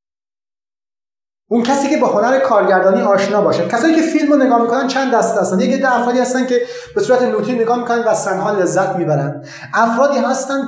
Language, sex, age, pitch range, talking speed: Persian, male, 30-49, 195-270 Hz, 185 wpm